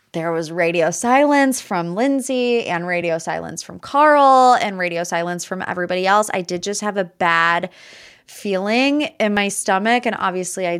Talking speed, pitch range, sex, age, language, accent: 165 wpm, 170-200 Hz, female, 20-39, English, American